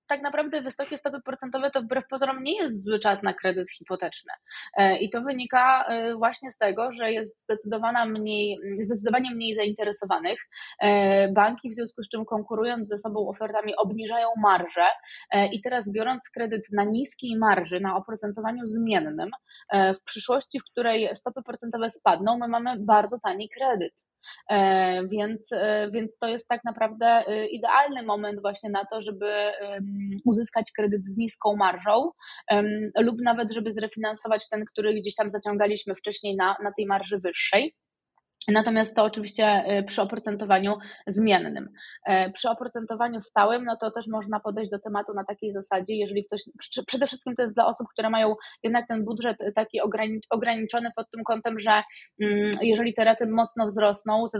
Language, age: Polish, 20-39